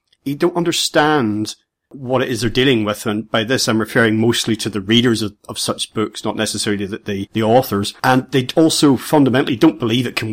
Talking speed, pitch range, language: 205 wpm, 110-140 Hz, English